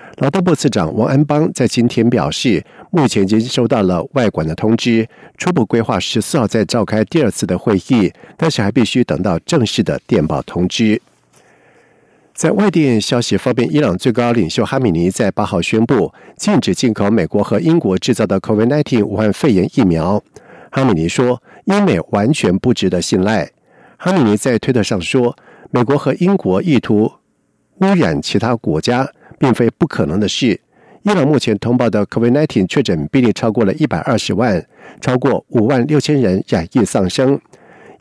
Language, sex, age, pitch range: Chinese, male, 50-69, 105-140 Hz